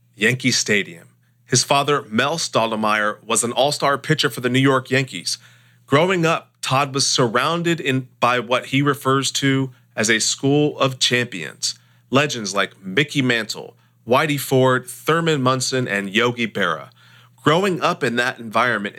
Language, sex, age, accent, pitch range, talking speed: English, male, 40-59, American, 115-145 Hz, 145 wpm